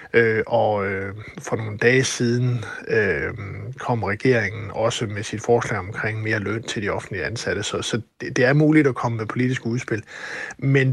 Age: 60-79